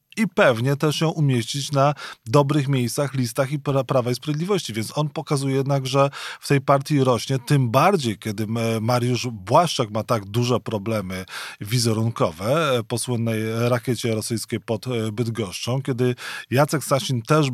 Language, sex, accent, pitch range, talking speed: Polish, male, native, 115-140 Hz, 145 wpm